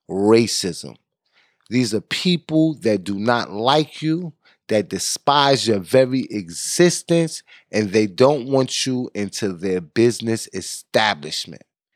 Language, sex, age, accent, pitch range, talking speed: English, male, 30-49, American, 105-135 Hz, 115 wpm